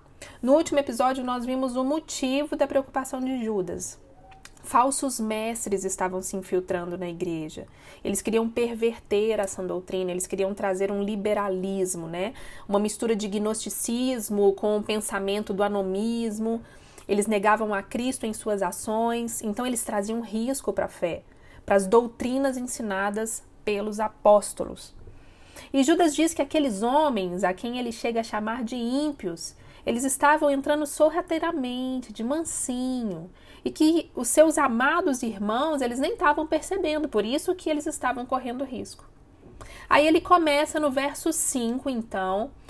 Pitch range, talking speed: 205-275 Hz, 145 wpm